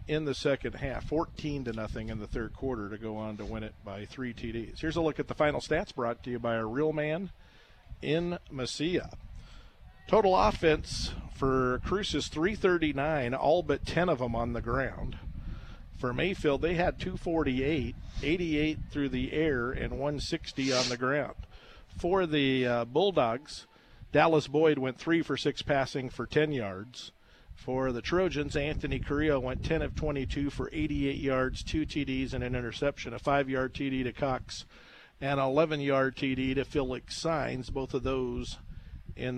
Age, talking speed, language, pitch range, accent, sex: 50-69, 170 wpm, English, 120-150 Hz, American, male